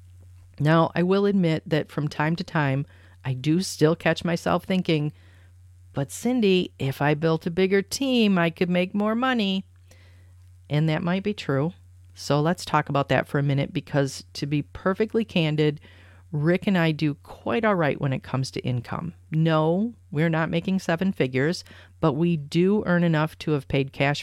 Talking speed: 180 wpm